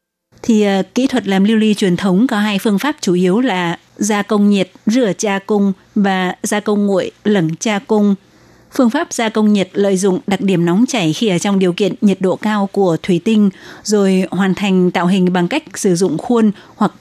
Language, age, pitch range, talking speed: Vietnamese, 20-39, 185-220 Hz, 220 wpm